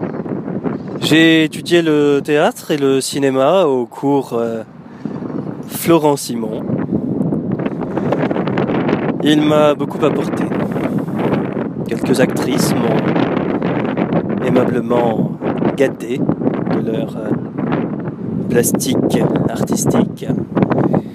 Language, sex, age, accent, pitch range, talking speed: French, male, 30-49, French, 140-180 Hz, 70 wpm